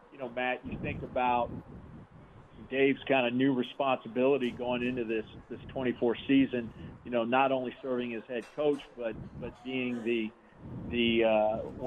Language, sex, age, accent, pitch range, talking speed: English, male, 40-59, American, 115-130 Hz, 145 wpm